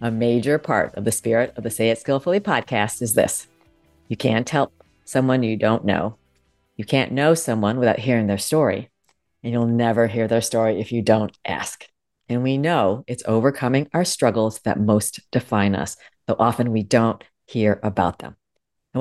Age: 40-59